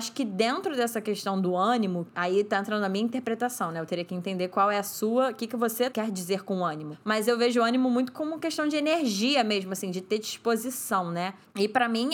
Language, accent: Portuguese, Brazilian